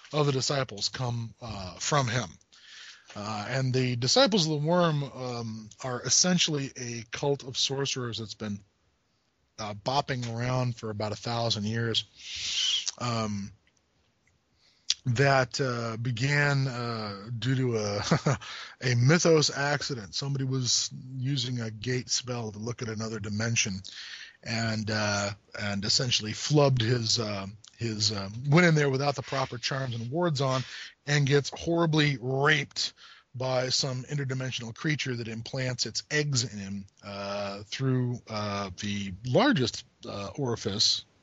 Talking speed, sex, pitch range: 135 wpm, male, 105-135 Hz